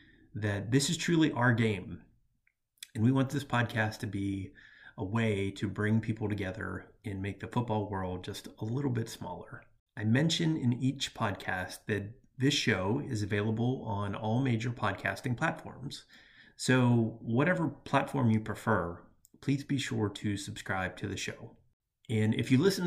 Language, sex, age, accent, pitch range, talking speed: English, male, 30-49, American, 100-130 Hz, 160 wpm